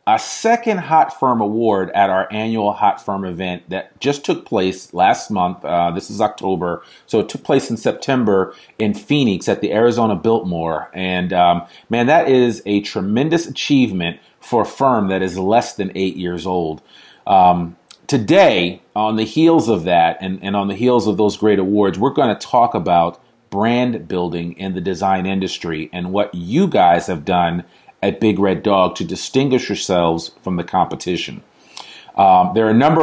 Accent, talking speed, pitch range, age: American, 180 wpm, 90-115 Hz, 40-59